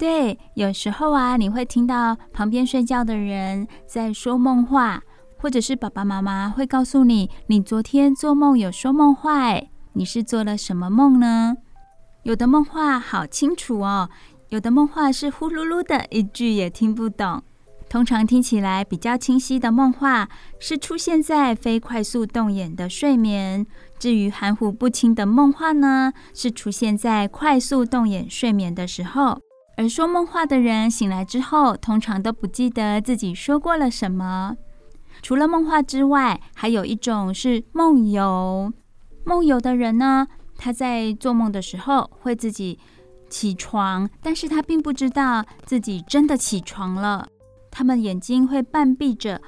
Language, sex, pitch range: Chinese, female, 210-270 Hz